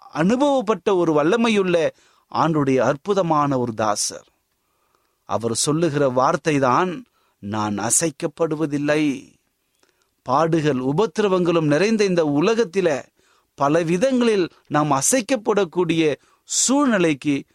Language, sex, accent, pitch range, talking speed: Tamil, male, native, 130-180 Hz, 70 wpm